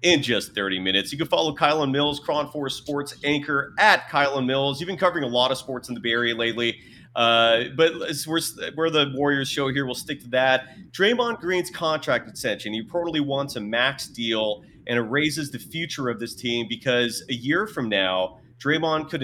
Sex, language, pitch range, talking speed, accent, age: male, English, 115-155 Hz, 200 wpm, American, 30-49